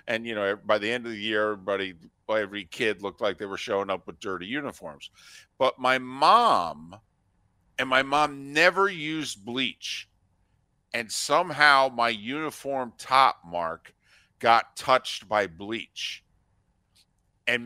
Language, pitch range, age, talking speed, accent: English, 110-140 Hz, 50-69, 140 wpm, American